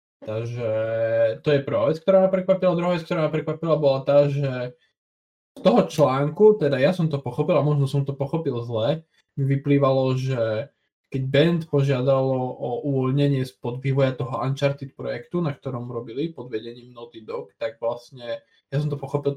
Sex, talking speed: male, 175 wpm